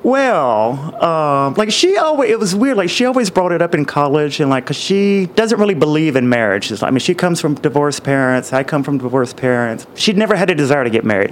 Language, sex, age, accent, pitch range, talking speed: English, male, 30-49, American, 120-175 Hz, 250 wpm